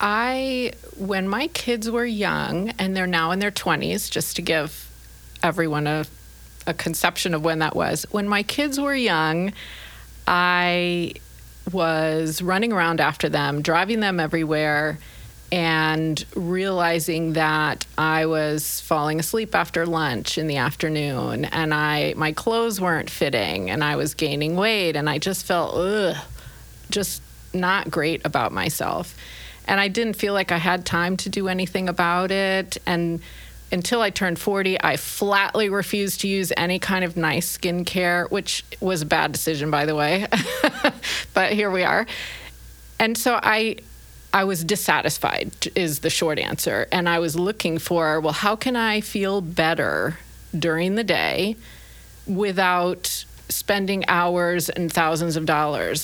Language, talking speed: English, 150 wpm